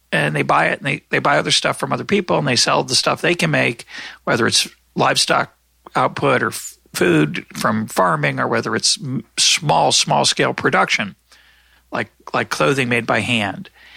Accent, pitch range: American, 110-150 Hz